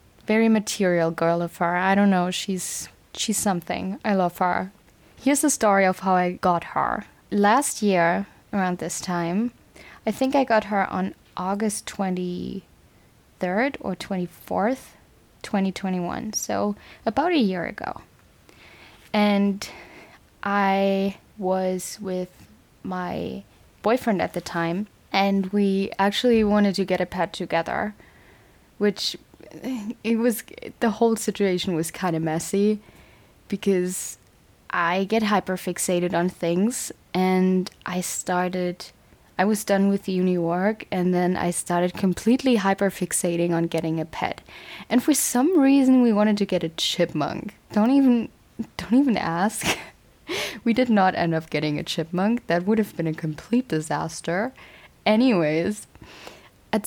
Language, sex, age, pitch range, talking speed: English, female, 10-29, 175-215 Hz, 140 wpm